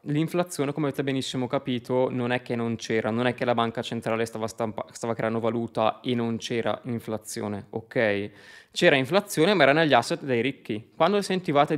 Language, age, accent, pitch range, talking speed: Italian, 20-39, native, 115-140 Hz, 180 wpm